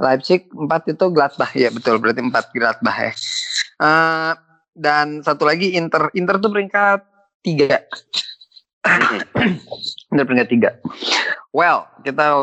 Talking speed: 115 wpm